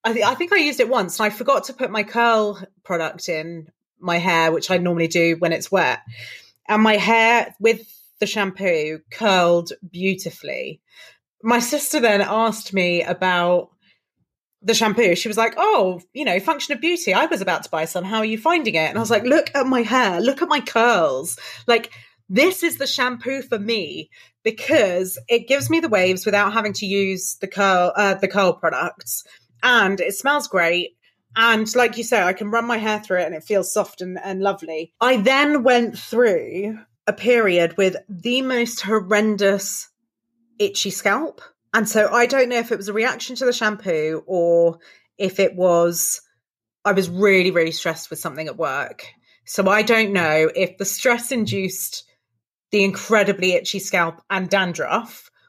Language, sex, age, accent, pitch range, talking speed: English, female, 30-49, British, 180-235 Hz, 185 wpm